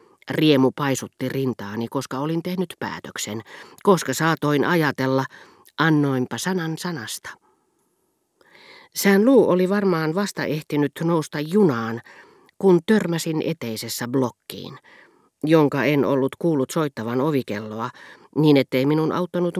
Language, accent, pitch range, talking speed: Finnish, native, 125-165 Hz, 105 wpm